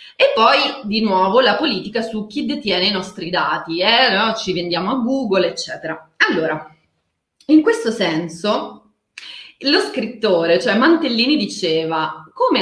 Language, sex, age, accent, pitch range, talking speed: Italian, female, 30-49, native, 185-270 Hz, 135 wpm